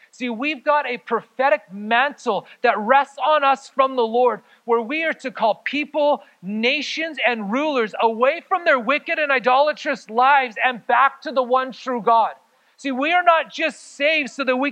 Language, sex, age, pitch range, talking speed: English, male, 30-49, 230-295 Hz, 185 wpm